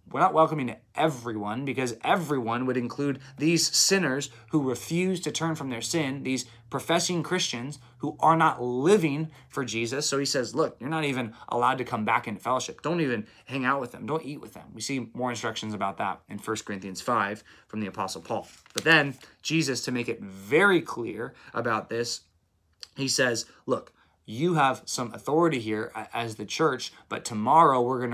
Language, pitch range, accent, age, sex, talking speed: English, 110-140 Hz, American, 20-39, male, 190 wpm